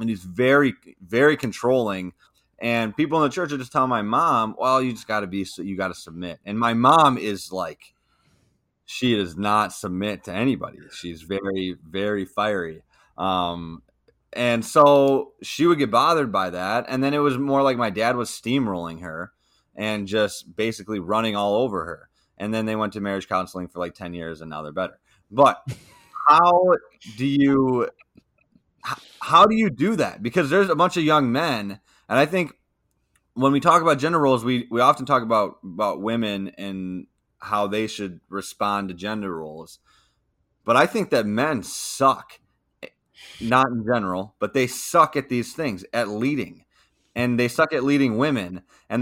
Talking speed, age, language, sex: 180 wpm, 20-39, English, male